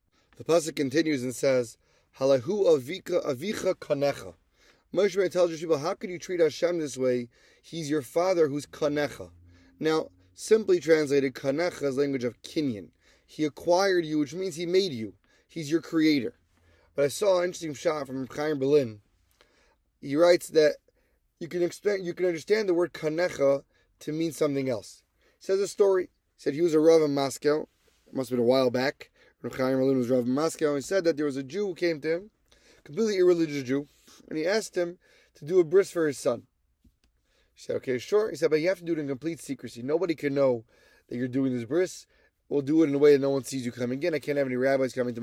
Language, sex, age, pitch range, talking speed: English, male, 20-39, 135-175 Hz, 210 wpm